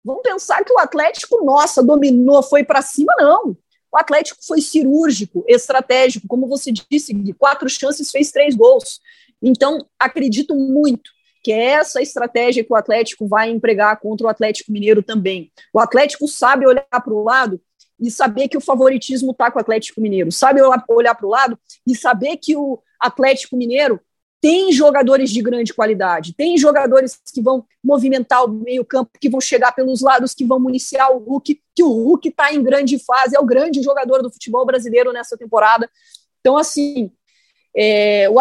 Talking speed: 175 wpm